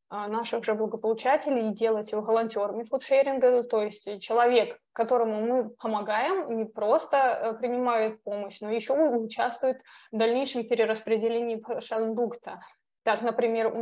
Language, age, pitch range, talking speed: Russian, 20-39, 215-240 Hz, 120 wpm